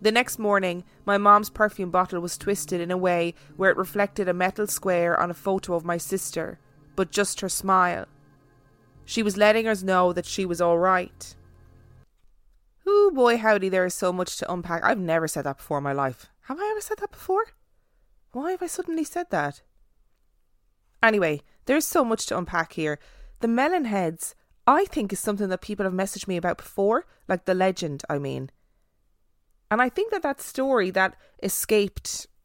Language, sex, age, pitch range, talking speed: English, female, 20-39, 165-210 Hz, 185 wpm